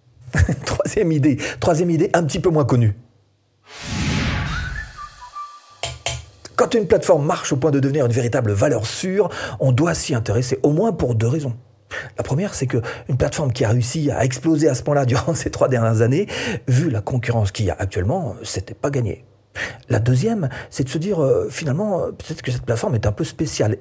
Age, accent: 40-59, French